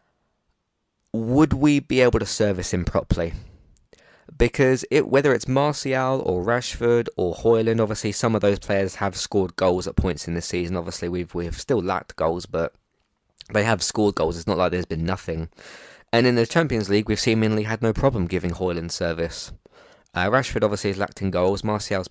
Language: English